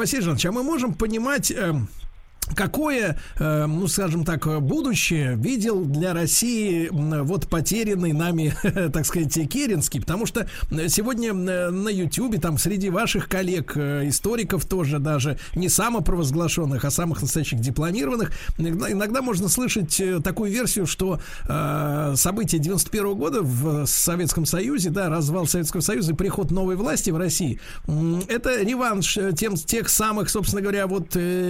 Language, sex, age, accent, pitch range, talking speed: Russian, male, 50-69, native, 150-195 Hz, 130 wpm